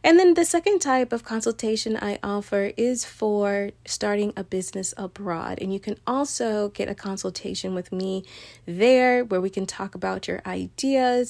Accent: American